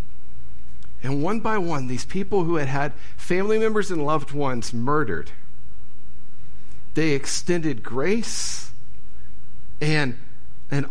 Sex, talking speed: male, 110 wpm